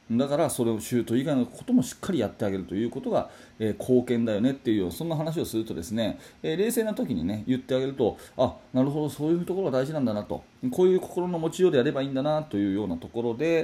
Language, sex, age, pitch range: Japanese, male, 30-49, 110-165 Hz